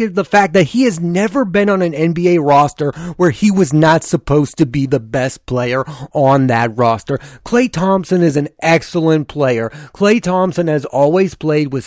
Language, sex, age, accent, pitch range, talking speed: English, male, 30-49, American, 150-195 Hz, 180 wpm